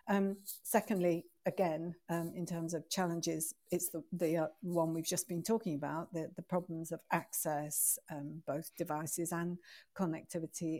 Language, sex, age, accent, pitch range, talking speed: English, female, 60-79, British, 165-190 Hz, 155 wpm